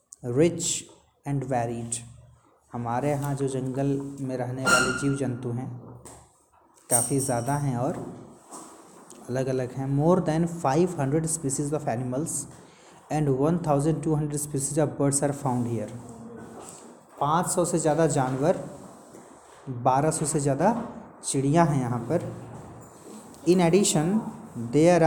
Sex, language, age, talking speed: male, Hindi, 30-49, 130 wpm